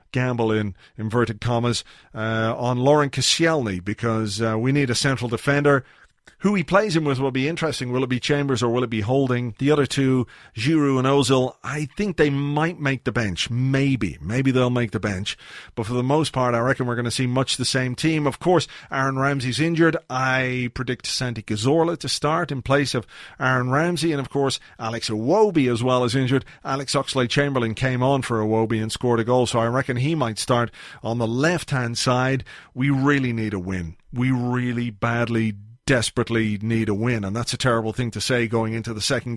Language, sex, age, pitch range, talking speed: English, male, 40-59, 115-140 Hz, 205 wpm